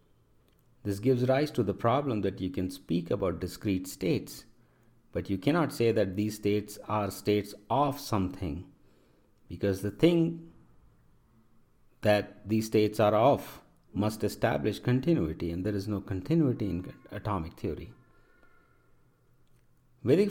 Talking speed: 130 wpm